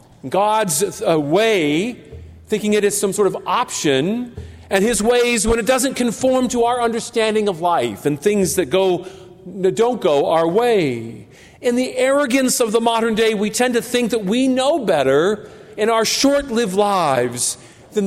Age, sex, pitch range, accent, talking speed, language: 50-69, male, 170-240 Hz, American, 170 wpm, English